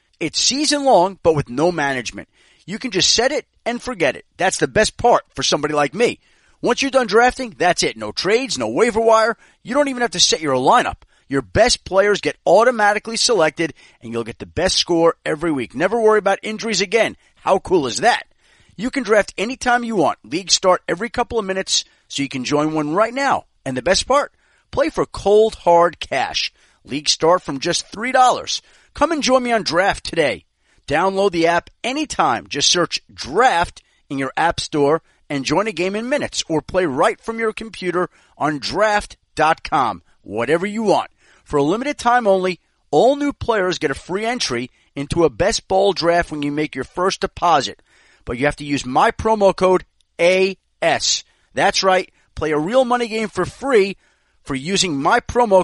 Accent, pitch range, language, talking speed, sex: American, 155-225 Hz, English, 190 wpm, male